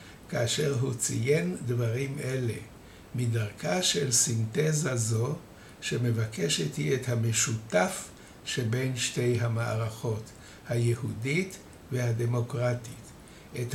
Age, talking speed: 60-79, 85 wpm